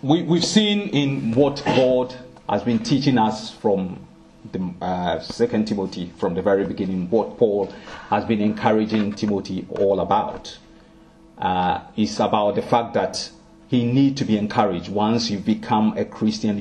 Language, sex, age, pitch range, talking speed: English, male, 40-59, 105-135 Hz, 150 wpm